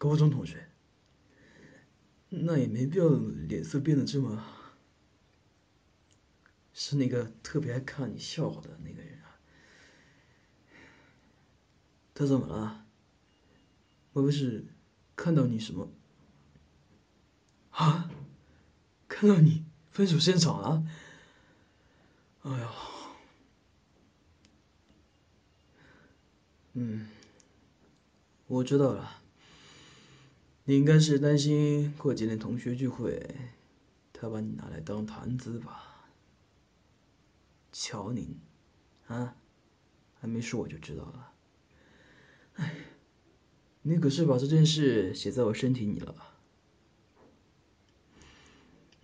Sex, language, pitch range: male, Chinese, 105-145 Hz